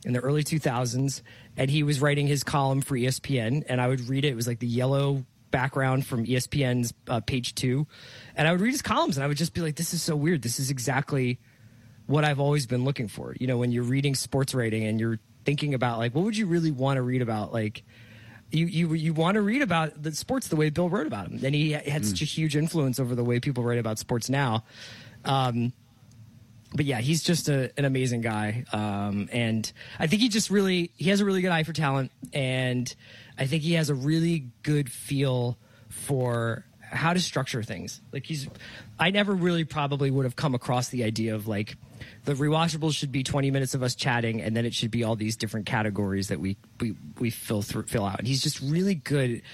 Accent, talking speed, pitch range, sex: American, 230 wpm, 115-150 Hz, male